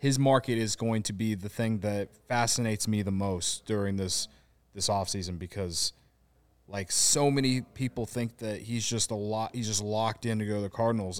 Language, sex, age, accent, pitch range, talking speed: English, male, 20-39, American, 110-145 Hz, 200 wpm